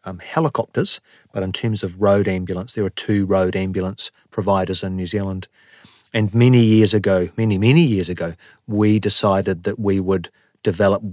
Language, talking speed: English, 165 wpm